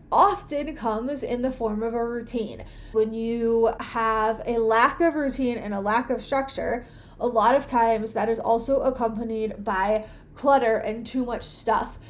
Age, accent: 20-39, American